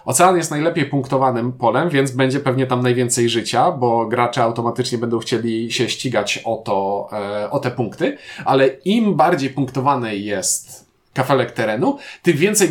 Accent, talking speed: native, 155 wpm